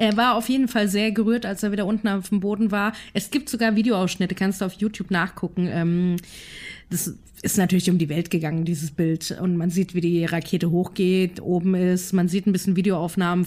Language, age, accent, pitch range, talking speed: German, 30-49, German, 185-220 Hz, 210 wpm